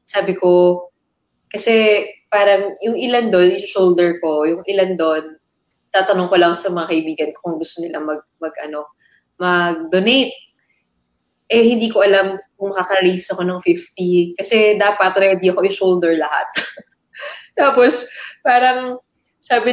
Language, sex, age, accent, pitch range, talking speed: English, female, 20-39, Filipino, 180-225 Hz, 140 wpm